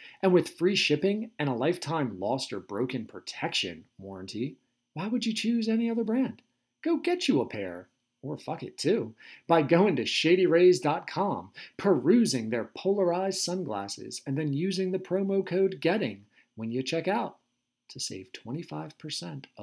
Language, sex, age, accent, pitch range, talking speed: English, male, 40-59, American, 130-195 Hz, 155 wpm